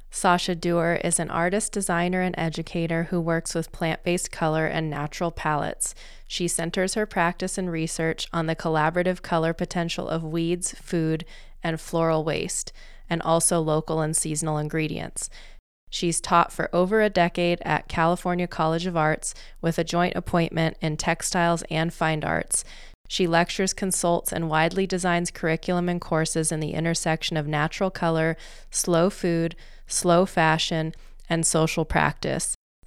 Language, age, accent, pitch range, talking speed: English, 20-39, American, 160-180 Hz, 150 wpm